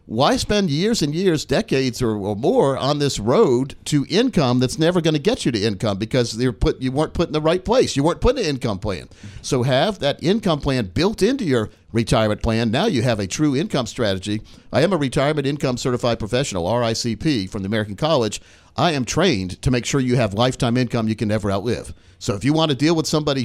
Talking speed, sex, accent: 230 wpm, male, American